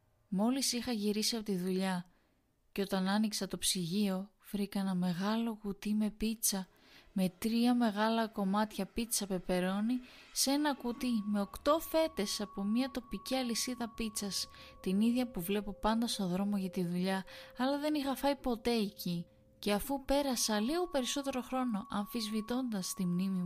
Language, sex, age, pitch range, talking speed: Greek, female, 20-39, 195-260 Hz, 150 wpm